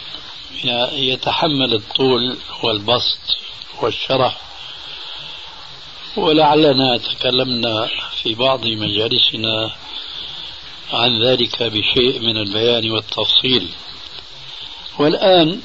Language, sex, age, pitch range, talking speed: Arabic, male, 60-79, 115-145 Hz, 60 wpm